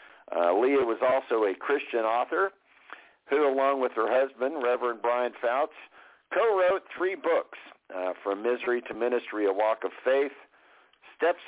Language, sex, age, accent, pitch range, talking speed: English, male, 50-69, American, 115-140 Hz, 145 wpm